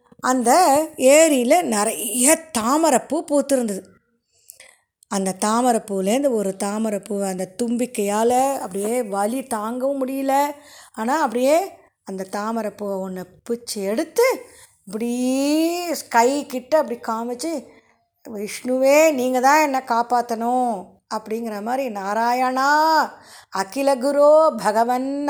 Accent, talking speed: native, 90 wpm